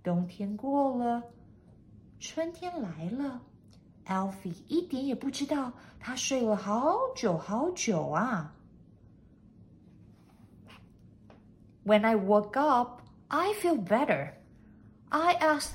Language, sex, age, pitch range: Chinese, female, 50-69, 190-295 Hz